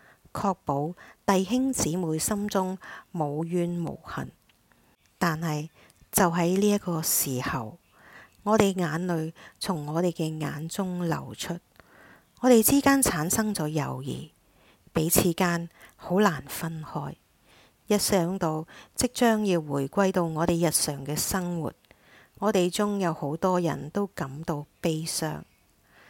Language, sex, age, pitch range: English, female, 50-69, 155-195 Hz